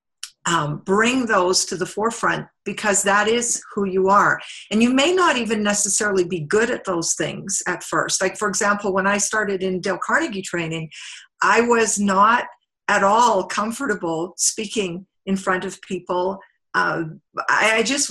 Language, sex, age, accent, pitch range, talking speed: English, female, 50-69, American, 180-215 Hz, 165 wpm